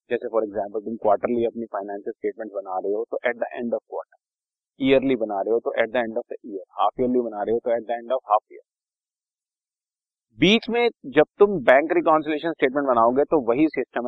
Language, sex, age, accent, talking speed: Hindi, male, 40-59, native, 210 wpm